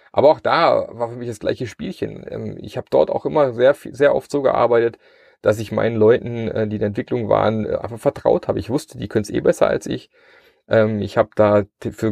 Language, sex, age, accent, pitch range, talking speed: German, male, 30-49, German, 100-120 Hz, 220 wpm